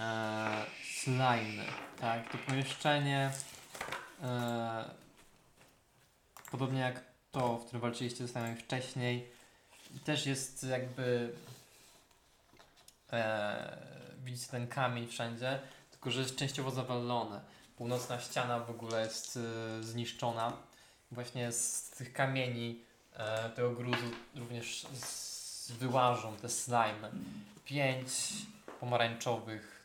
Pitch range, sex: 115-130 Hz, male